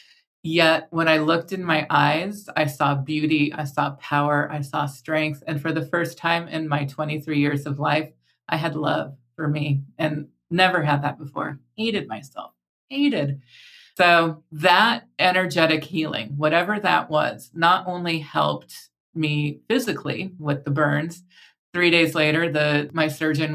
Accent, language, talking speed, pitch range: American, English, 155 wpm, 150-175 Hz